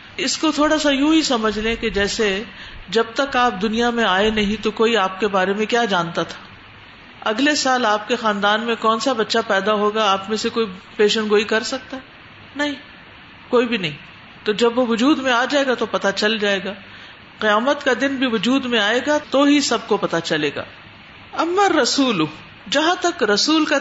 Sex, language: female, Urdu